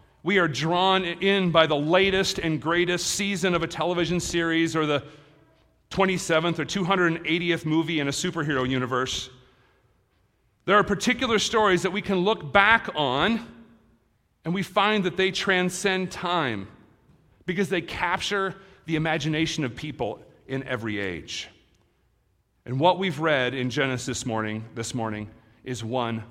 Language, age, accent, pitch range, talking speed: English, 40-59, American, 130-190 Hz, 140 wpm